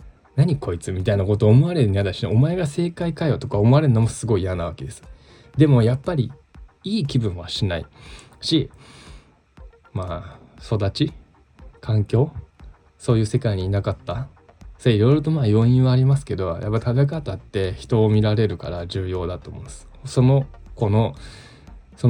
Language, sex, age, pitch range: Japanese, male, 20-39, 95-130 Hz